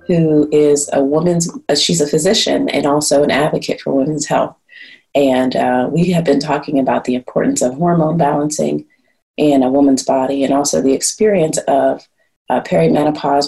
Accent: American